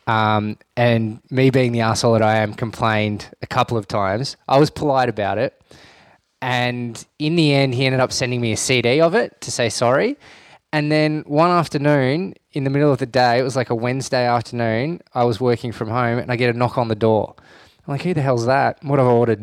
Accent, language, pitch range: Australian, English, 105-130 Hz